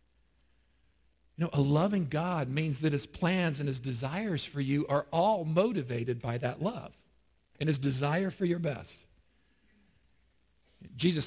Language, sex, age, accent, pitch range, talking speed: English, male, 50-69, American, 130-175 Hz, 145 wpm